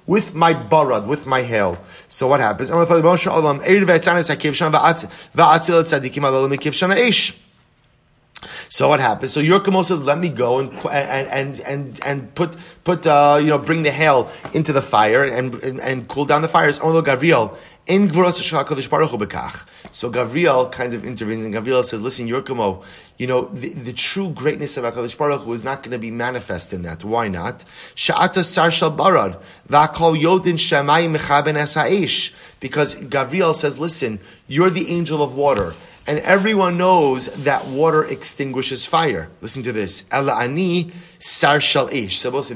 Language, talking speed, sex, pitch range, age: English, 130 wpm, male, 125-165 Hz, 30-49